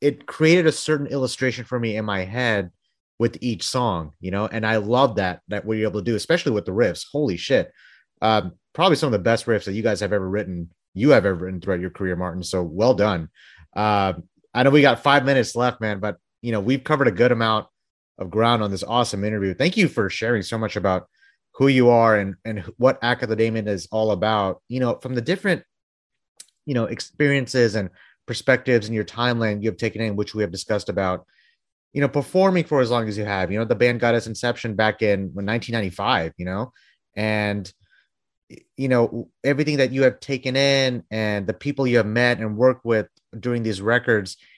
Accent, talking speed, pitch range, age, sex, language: American, 215 wpm, 105-125 Hz, 30-49, male, English